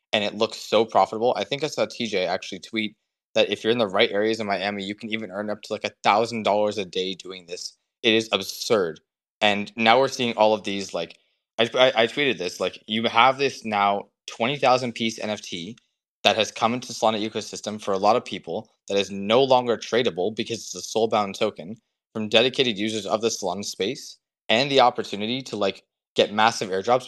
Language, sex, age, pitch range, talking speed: English, male, 20-39, 105-125 Hz, 205 wpm